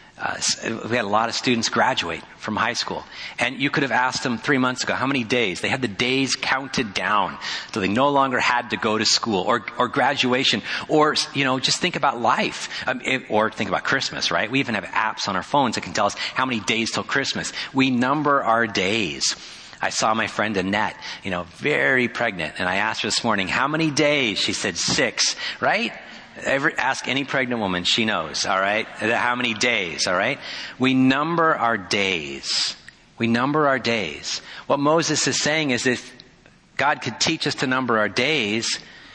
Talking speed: 200 wpm